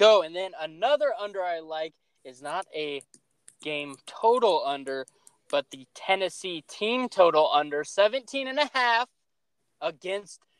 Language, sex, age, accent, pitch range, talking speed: English, male, 20-39, American, 165-235 Hz, 135 wpm